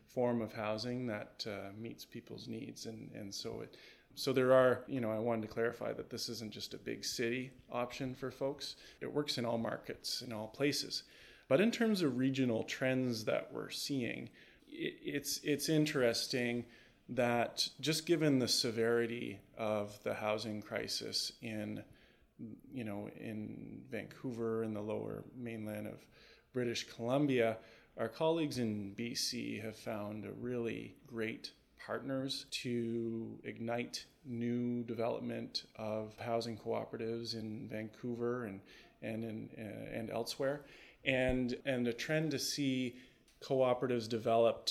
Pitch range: 110-130 Hz